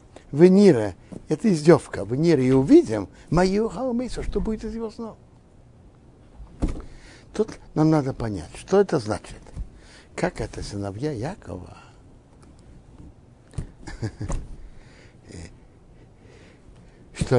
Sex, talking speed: male, 90 wpm